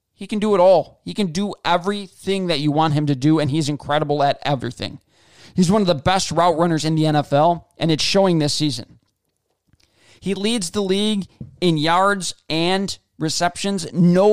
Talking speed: 185 wpm